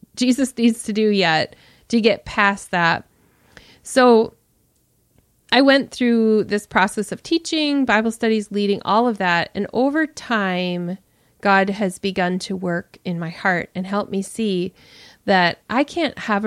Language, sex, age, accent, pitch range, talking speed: English, female, 30-49, American, 185-220 Hz, 155 wpm